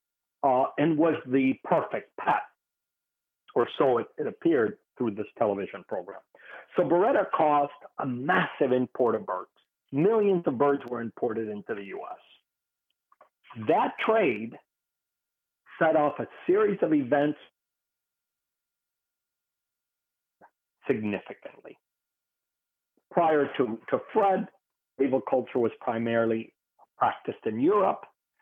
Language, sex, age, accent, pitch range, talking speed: English, male, 50-69, American, 115-145 Hz, 110 wpm